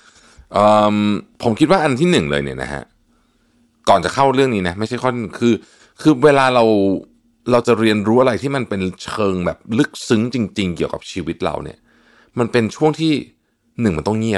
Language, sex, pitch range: Thai, male, 85-120 Hz